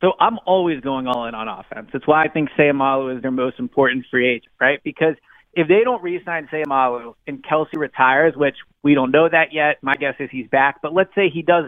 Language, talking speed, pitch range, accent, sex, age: English, 230 wpm, 135-170 Hz, American, male, 30-49